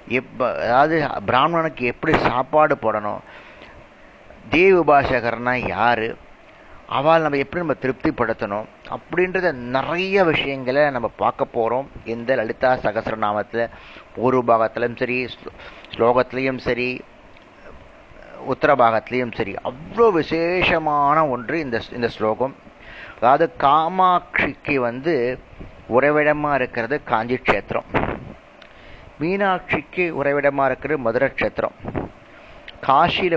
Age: 30-49